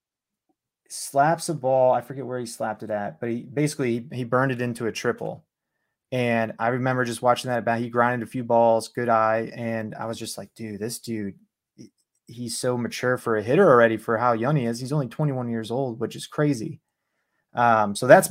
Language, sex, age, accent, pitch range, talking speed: English, male, 30-49, American, 115-135 Hz, 215 wpm